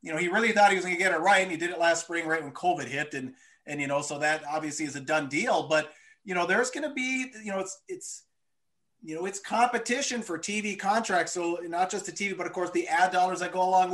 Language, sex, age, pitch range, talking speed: English, male, 30-49, 160-205 Hz, 280 wpm